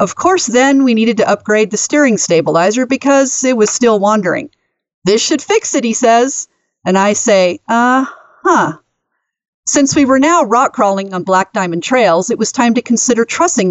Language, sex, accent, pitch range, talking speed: English, female, American, 195-265 Hz, 185 wpm